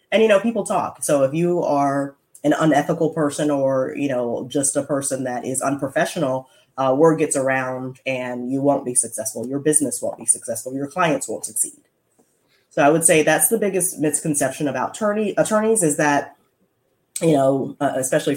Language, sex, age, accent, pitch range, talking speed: English, female, 20-39, American, 130-160 Hz, 185 wpm